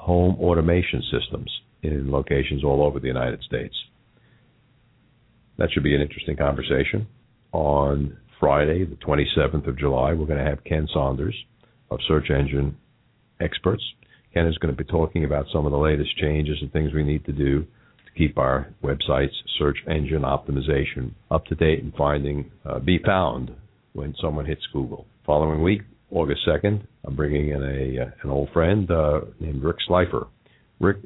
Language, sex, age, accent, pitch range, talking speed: English, male, 50-69, American, 70-90 Hz, 165 wpm